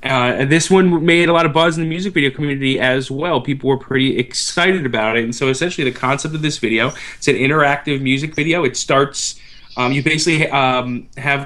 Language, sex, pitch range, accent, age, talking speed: English, male, 120-145 Hz, American, 20-39, 215 wpm